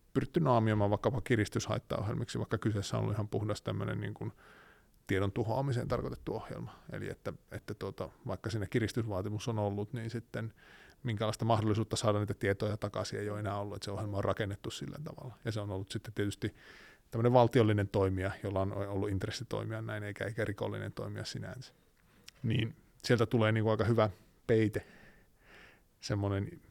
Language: Finnish